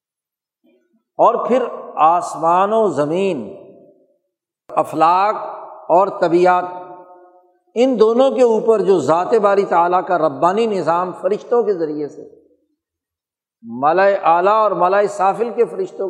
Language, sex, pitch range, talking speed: Urdu, male, 185-285 Hz, 110 wpm